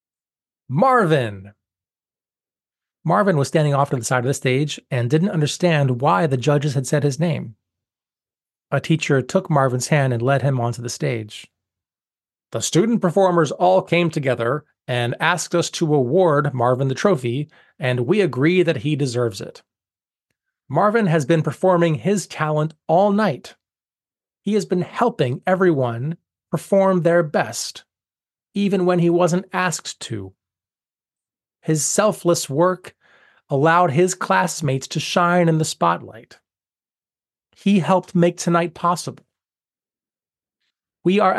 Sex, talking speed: male, 135 wpm